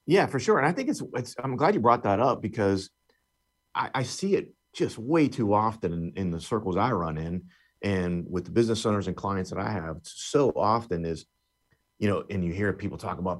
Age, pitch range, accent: 40-59, 90-115 Hz, American